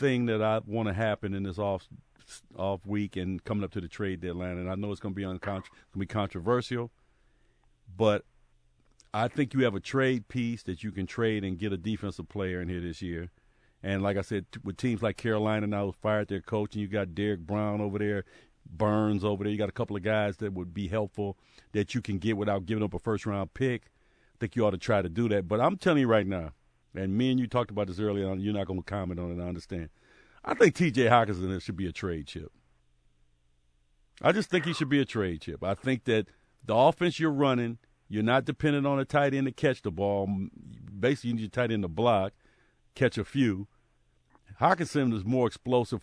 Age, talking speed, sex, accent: 50-69, 230 wpm, male, American